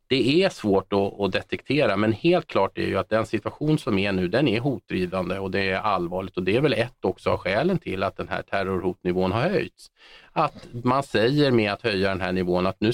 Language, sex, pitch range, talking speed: Swedish, male, 95-115 Hz, 225 wpm